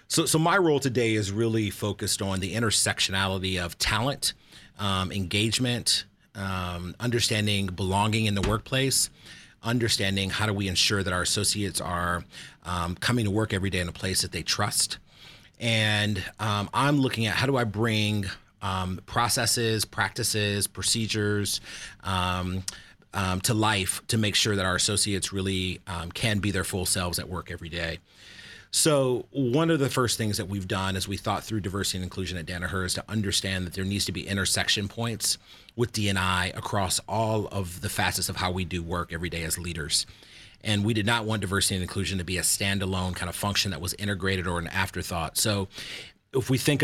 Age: 30-49